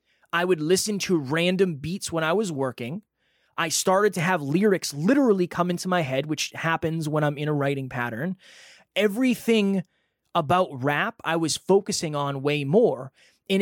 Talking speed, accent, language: 165 wpm, American, English